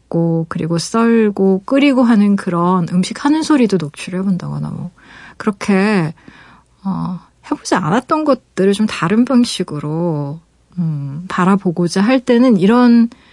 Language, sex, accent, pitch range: Korean, female, native, 175-235 Hz